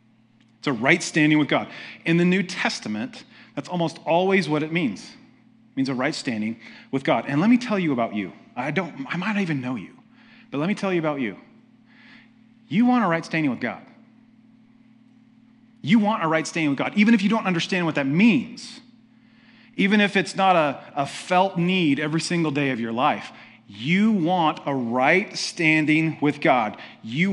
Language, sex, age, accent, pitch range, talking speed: English, male, 30-49, American, 135-205 Hz, 195 wpm